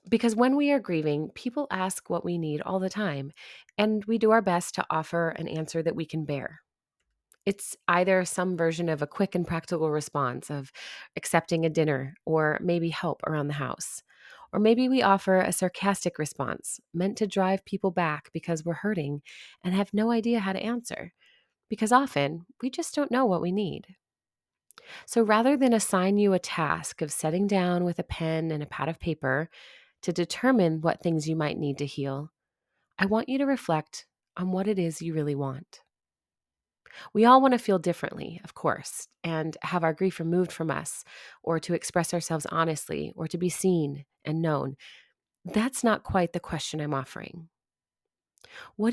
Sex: female